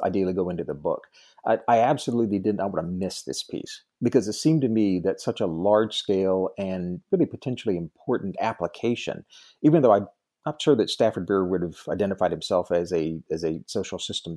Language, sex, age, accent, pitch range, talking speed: English, male, 40-59, American, 90-120 Hz, 200 wpm